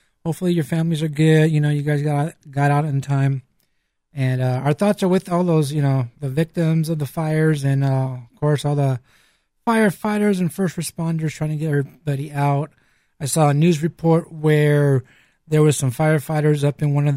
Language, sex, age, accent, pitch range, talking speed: English, male, 30-49, American, 145-170 Hz, 205 wpm